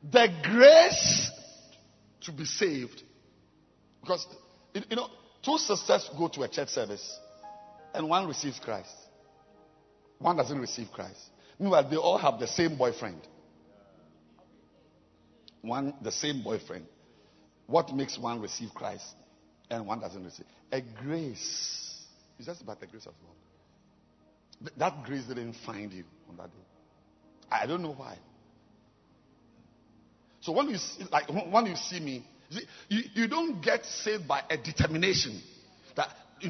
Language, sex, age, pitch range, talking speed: English, male, 50-69, 130-210 Hz, 130 wpm